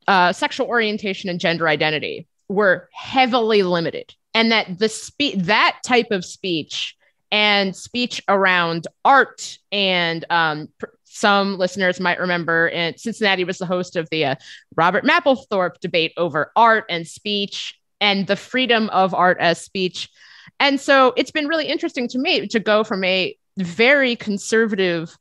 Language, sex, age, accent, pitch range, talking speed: English, female, 30-49, American, 175-245 Hz, 150 wpm